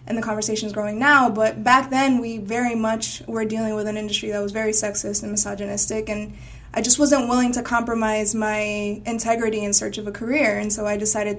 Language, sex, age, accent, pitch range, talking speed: English, female, 20-39, American, 210-245 Hz, 215 wpm